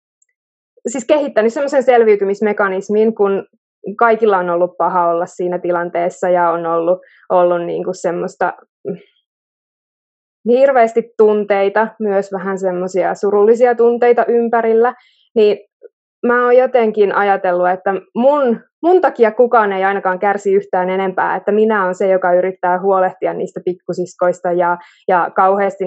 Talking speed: 120 wpm